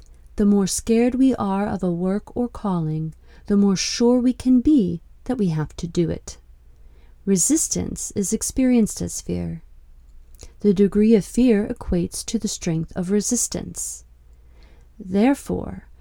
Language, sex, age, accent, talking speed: English, female, 30-49, American, 140 wpm